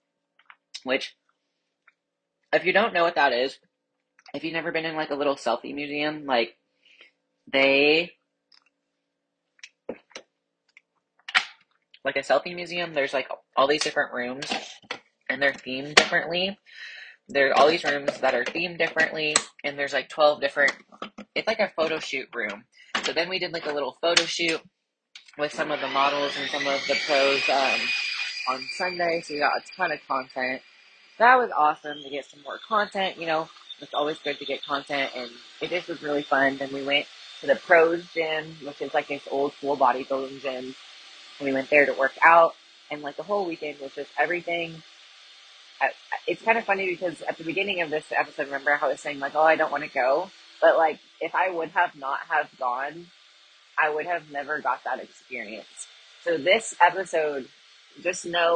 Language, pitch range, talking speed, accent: English, 140-170 Hz, 180 wpm, American